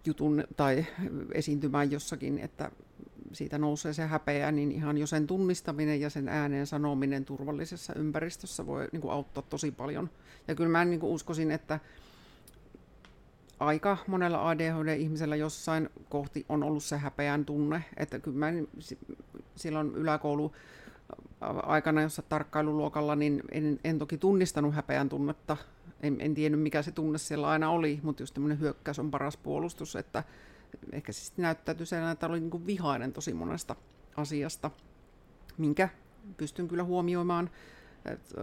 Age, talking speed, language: 50-69, 140 wpm, Finnish